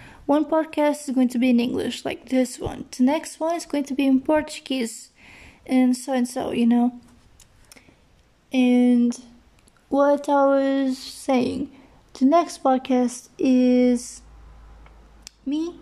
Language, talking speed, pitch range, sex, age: English, 135 wpm, 245-280 Hz, female, 30-49